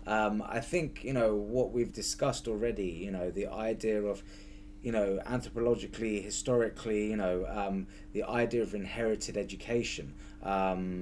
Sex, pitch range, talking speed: male, 100-125 Hz, 145 wpm